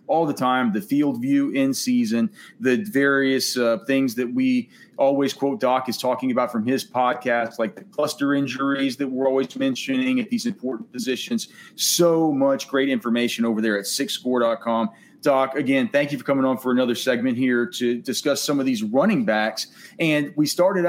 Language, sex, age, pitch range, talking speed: English, male, 30-49, 130-210 Hz, 185 wpm